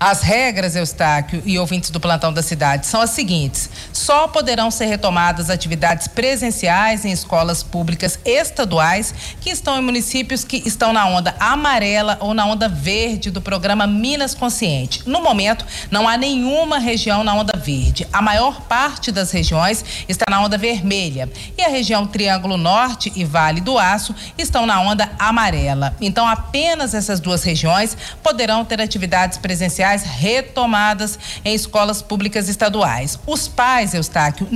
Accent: Brazilian